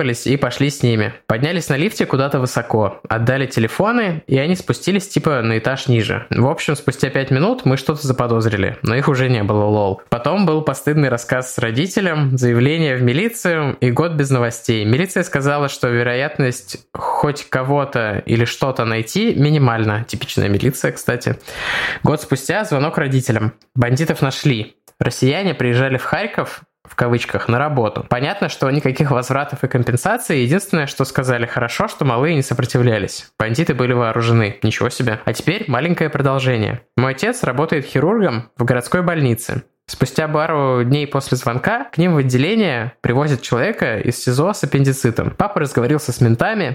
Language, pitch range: Russian, 125-160 Hz